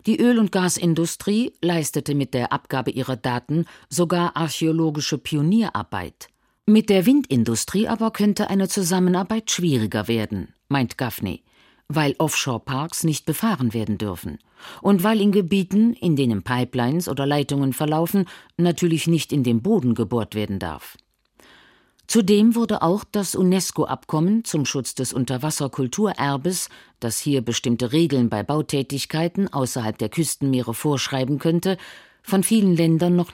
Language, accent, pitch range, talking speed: German, German, 130-195 Hz, 130 wpm